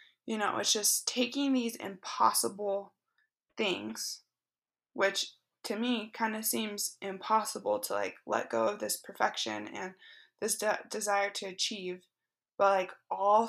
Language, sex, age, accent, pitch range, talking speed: English, female, 20-39, American, 190-230 Hz, 140 wpm